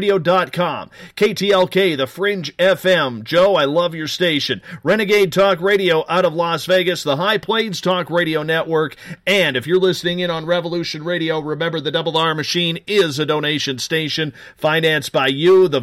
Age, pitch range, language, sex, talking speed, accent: 40-59, 155-185 Hz, English, male, 165 wpm, American